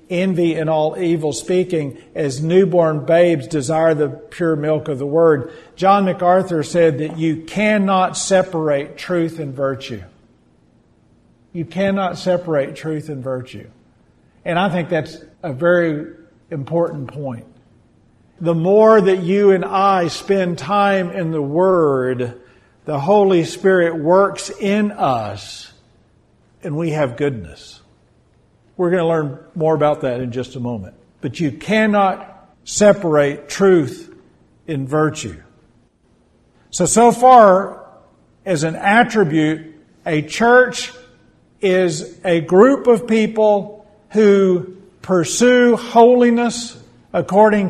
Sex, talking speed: male, 120 wpm